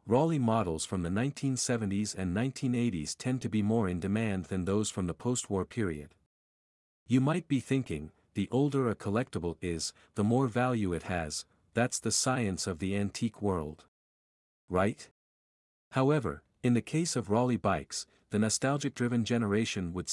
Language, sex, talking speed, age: English, male, 155 wpm, 50-69